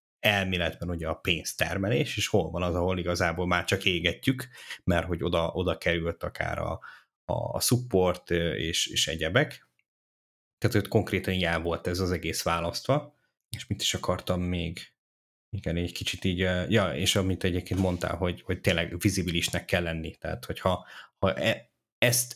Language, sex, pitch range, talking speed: Hungarian, male, 85-100 Hz, 160 wpm